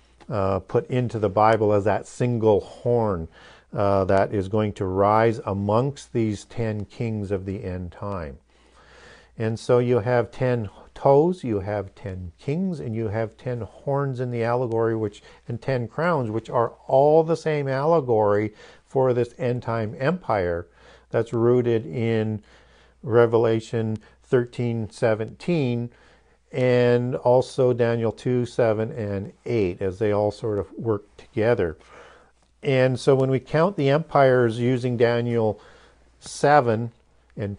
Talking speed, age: 140 wpm, 50-69